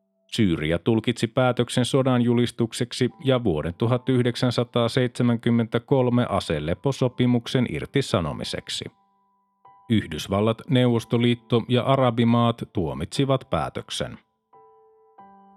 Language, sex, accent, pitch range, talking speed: Finnish, male, native, 110-135 Hz, 60 wpm